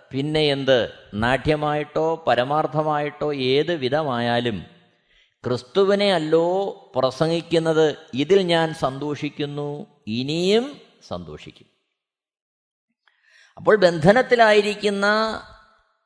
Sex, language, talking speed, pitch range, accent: male, Malayalam, 60 wpm, 140-195 Hz, native